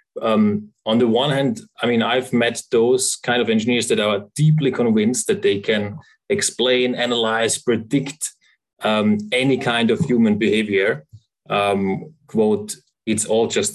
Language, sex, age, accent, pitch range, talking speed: English, male, 20-39, German, 110-160 Hz, 150 wpm